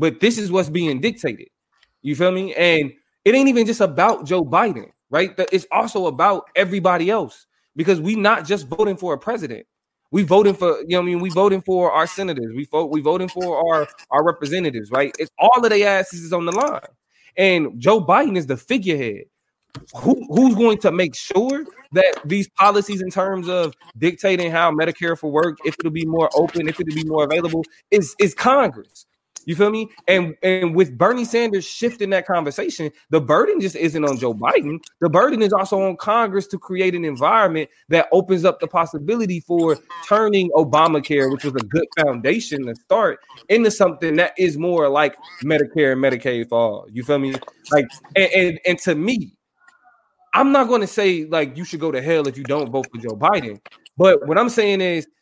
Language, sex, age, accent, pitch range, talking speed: English, male, 20-39, American, 155-200 Hz, 200 wpm